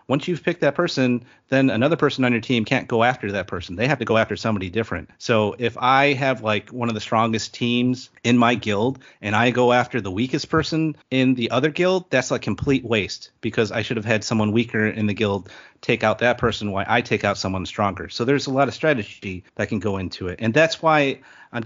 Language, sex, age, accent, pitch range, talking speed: English, male, 30-49, American, 110-140 Hz, 240 wpm